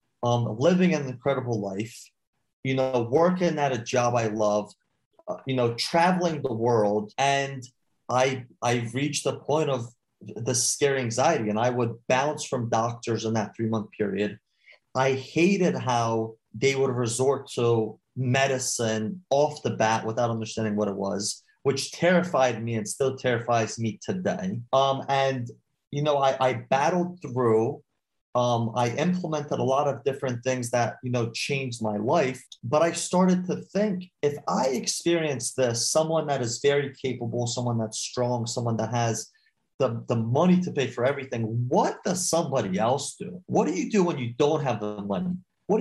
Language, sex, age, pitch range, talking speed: English, male, 30-49, 115-145 Hz, 170 wpm